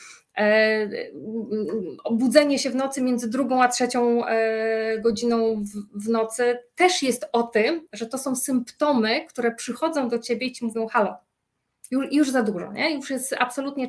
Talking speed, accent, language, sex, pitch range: 155 wpm, native, Polish, female, 215-255 Hz